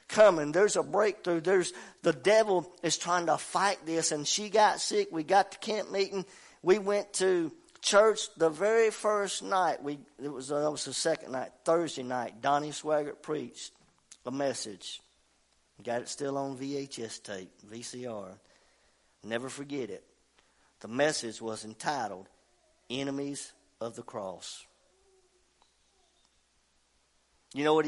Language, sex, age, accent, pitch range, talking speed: English, male, 50-69, American, 130-185 Hz, 145 wpm